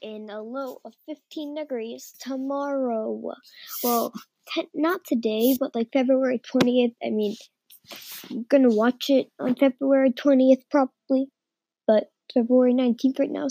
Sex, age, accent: female, 10-29, American